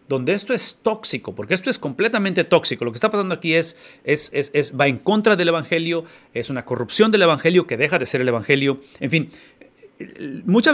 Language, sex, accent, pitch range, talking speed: English, male, Mexican, 145-215 Hz, 205 wpm